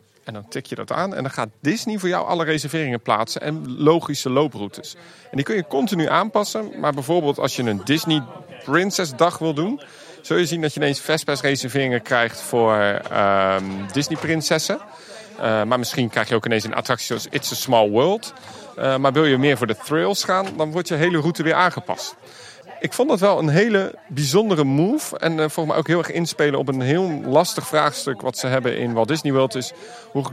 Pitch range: 130-170 Hz